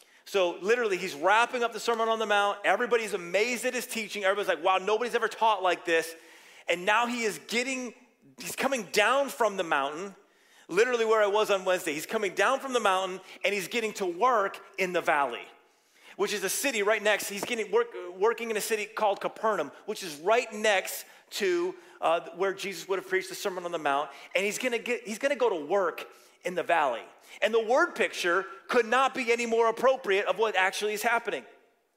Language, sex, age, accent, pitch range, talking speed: English, male, 30-49, American, 190-240 Hz, 205 wpm